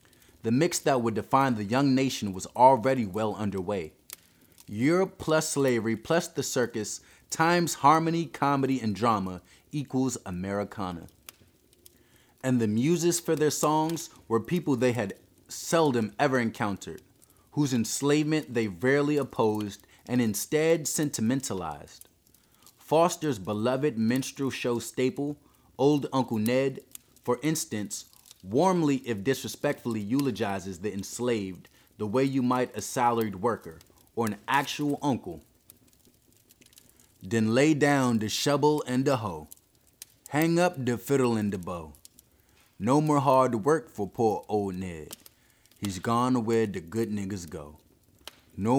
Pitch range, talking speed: 105-140 Hz, 130 wpm